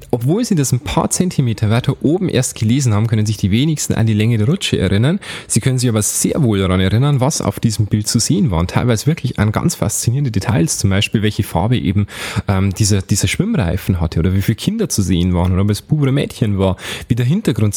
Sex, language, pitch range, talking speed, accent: male, German, 100-145 Hz, 235 wpm, German